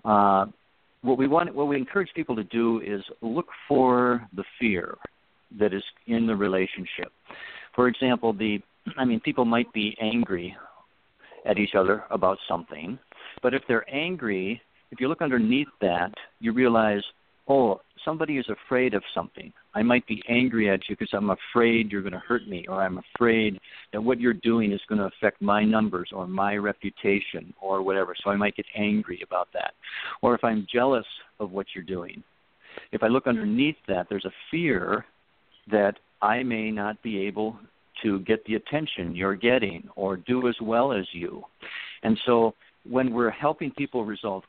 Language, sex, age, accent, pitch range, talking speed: English, male, 60-79, American, 100-120 Hz, 175 wpm